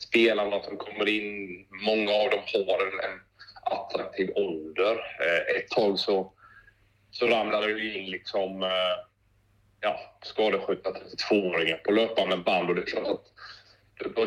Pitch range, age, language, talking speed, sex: 90-105 Hz, 30-49, Swedish, 125 wpm, male